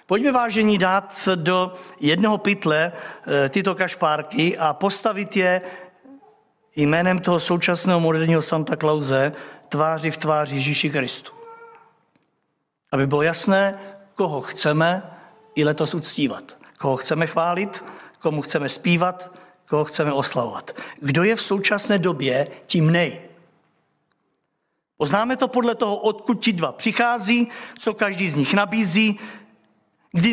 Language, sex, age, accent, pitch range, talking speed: Czech, male, 50-69, native, 160-210 Hz, 120 wpm